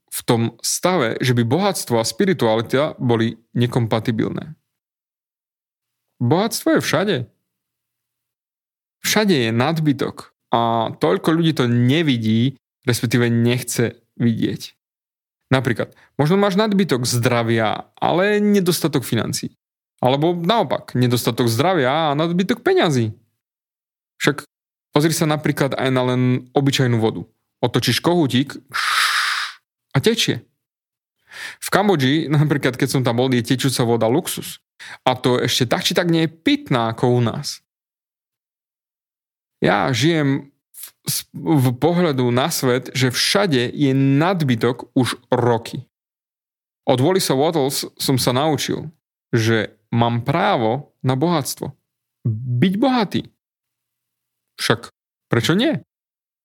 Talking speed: 110 wpm